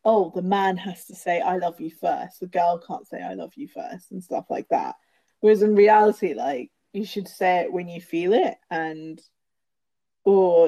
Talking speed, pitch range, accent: 200 wpm, 180-215 Hz, British